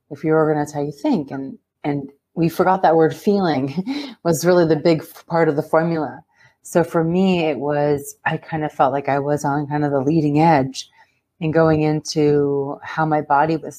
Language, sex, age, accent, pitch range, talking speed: English, female, 30-49, American, 145-165 Hz, 200 wpm